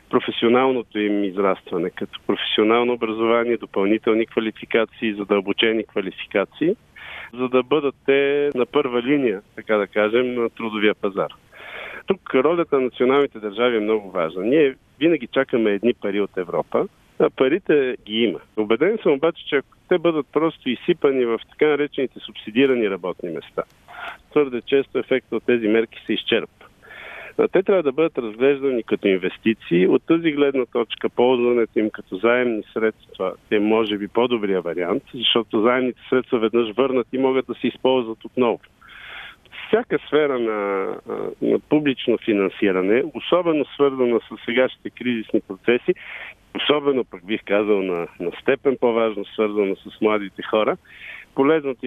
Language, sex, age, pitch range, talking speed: Bulgarian, male, 50-69, 110-135 Hz, 140 wpm